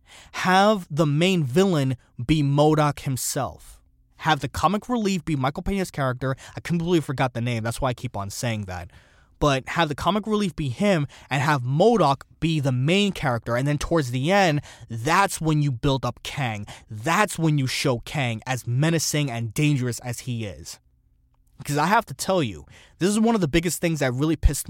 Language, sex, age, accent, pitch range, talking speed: English, male, 20-39, American, 120-170 Hz, 195 wpm